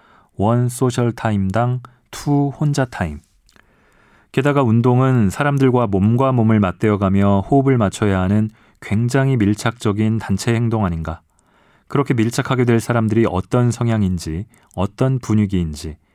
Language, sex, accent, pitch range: Korean, male, native, 100-125 Hz